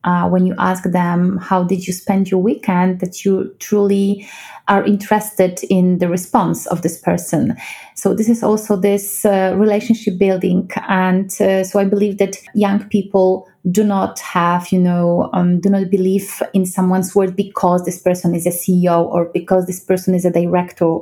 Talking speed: 180 wpm